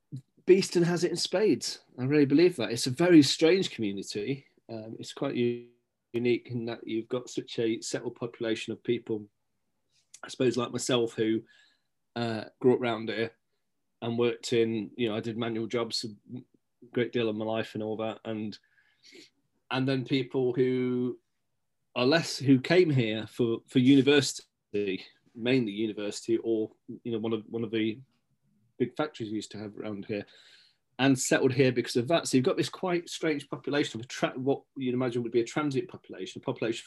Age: 30-49